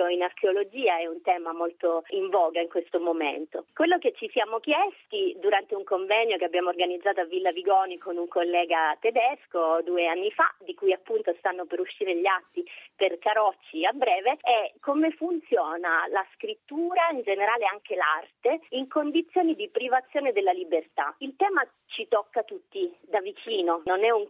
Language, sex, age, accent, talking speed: Italian, female, 30-49, native, 170 wpm